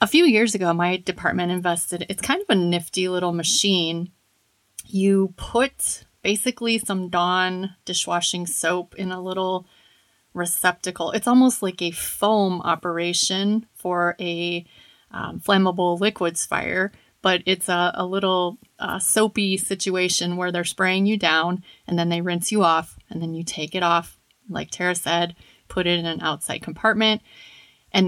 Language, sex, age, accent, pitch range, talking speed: English, female, 30-49, American, 175-200 Hz, 155 wpm